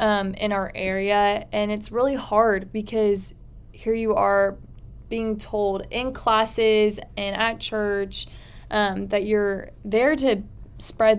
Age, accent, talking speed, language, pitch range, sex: 10-29, American, 135 wpm, English, 195-220 Hz, female